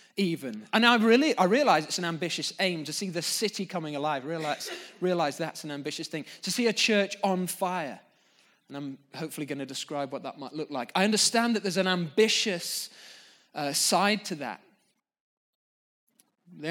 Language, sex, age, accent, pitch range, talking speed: English, male, 20-39, British, 140-190 Hz, 180 wpm